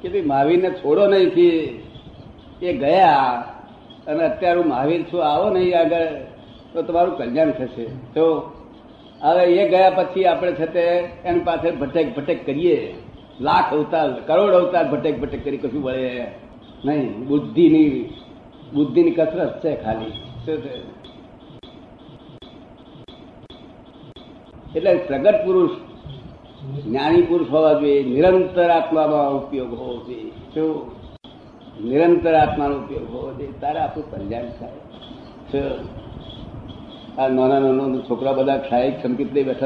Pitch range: 135-175 Hz